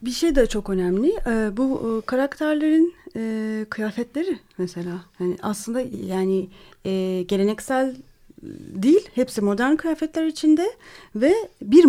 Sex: female